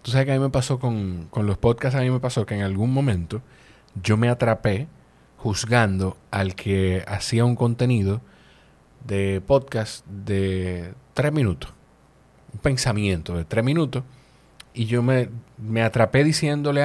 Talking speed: 155 wpm